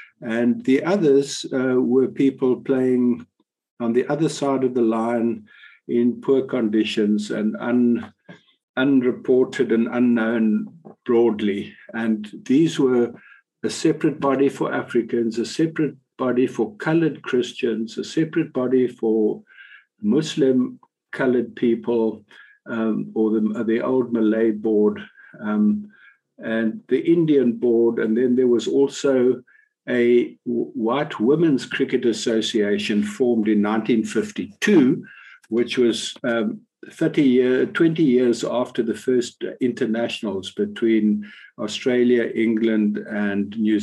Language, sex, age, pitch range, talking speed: English, male, 60-79, 110-130 Hz, 110 wpm